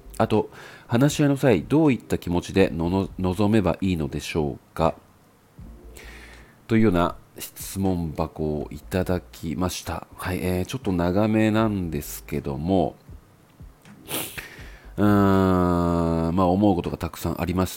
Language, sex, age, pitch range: Japanese, male, 40-59, 80-105 Hz